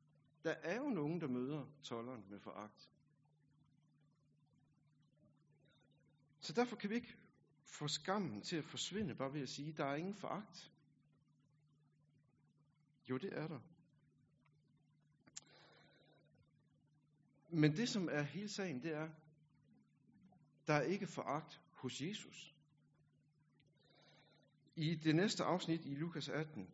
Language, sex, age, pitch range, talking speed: Danish, male, 60-79, 145-165 Hz, 115 wpm